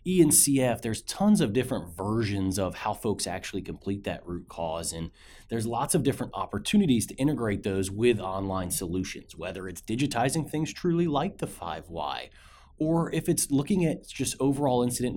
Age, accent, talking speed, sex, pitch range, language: 30-49, American, 165 wpm, male, 100-140 Hz, English